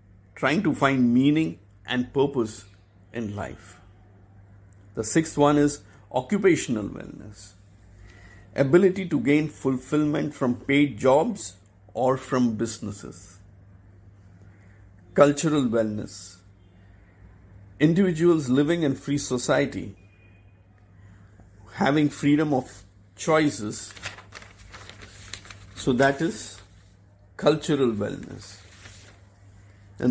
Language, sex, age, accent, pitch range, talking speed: English, male, 50-69, Indian, 100-135 Hz, 80 wpm